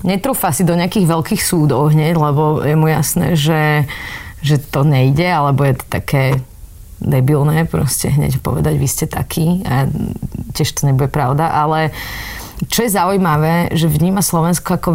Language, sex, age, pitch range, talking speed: Slovak, female, 30-49, 150-180 Hz, 155 wpm